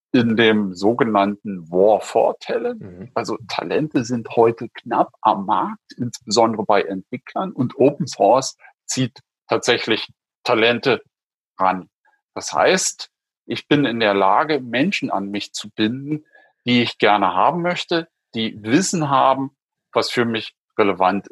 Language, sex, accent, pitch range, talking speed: German, male, German, 110-150 Hz, 130 wpm